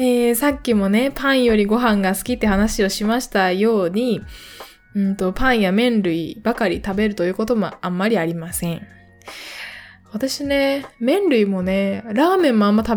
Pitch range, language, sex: 190-275 Hz, Japanese, female